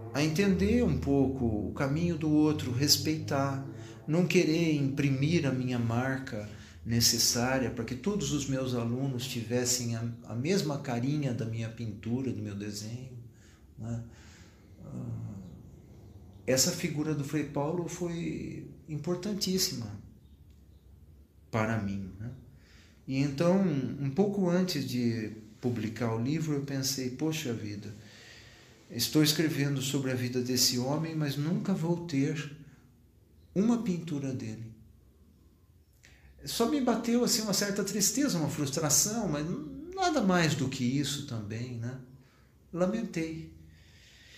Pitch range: 115-150 Hz